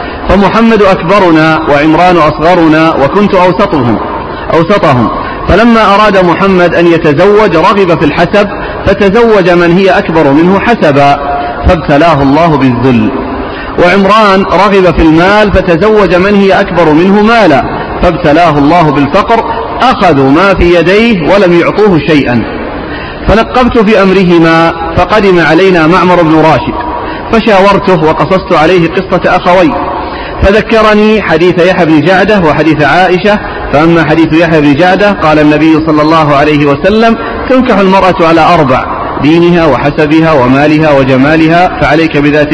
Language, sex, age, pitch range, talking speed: Arabic, male, 40-59, 150-195 Hz, 120 wpm